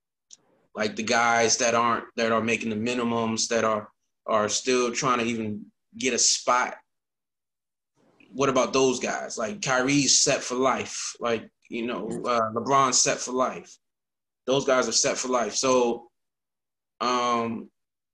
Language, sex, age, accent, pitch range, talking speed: English, male, 20-39, American, 110-130 Hz, 150 wpm